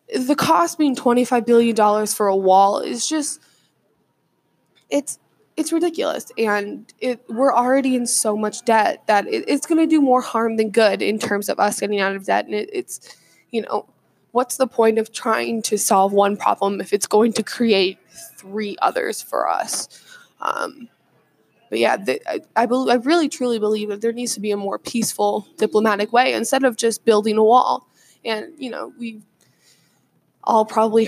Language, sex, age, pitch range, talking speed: English, female, 10-29, 205-250 Hz, 185 wpm